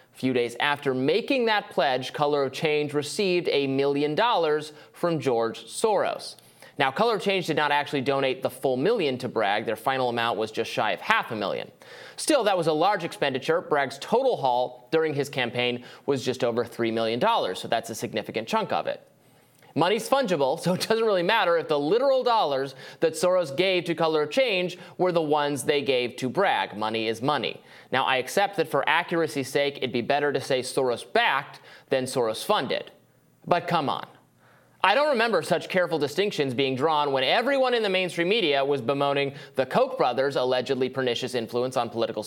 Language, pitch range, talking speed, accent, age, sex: English, 130-180 Hz, 195 wpm, American, 30-49, male